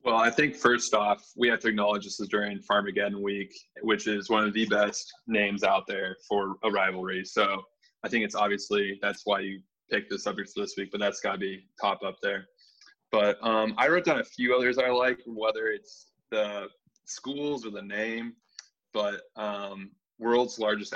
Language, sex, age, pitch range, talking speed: English, male, 20-39, 105-125 Hz, 195 wpm